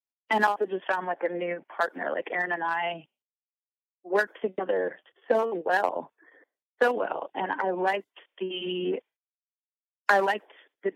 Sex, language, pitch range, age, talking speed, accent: female, English, 175-225 Hz, 30-49, 135 wpm, American